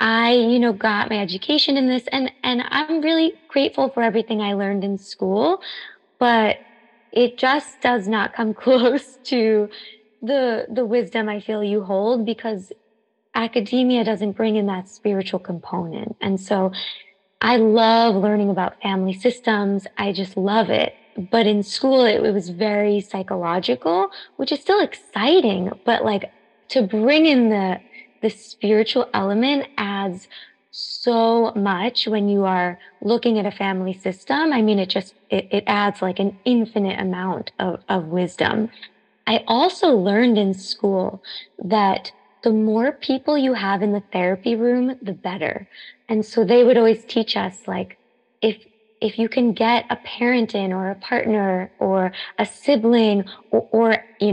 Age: 20-39